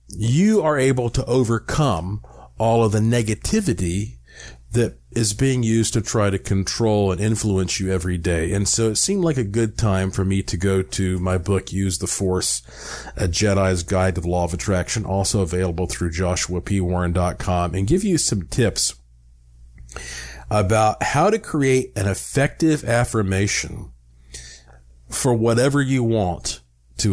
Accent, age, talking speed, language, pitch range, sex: American, 40-59, 155 wpm, English, 90-120 Hz, male